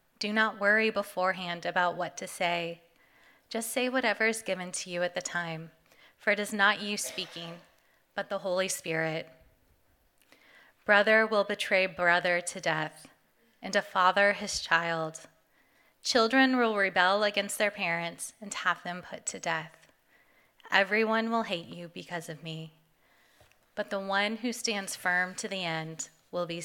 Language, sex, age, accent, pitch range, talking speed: English, female, 30-49, American, 175-220 Hz, 155 wpm